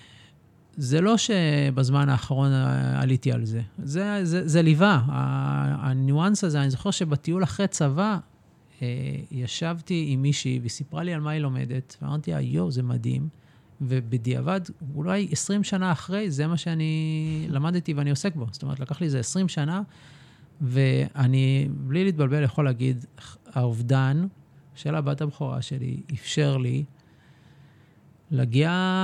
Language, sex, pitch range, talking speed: Hebrew, male, 135-175 Hz, 135 wpm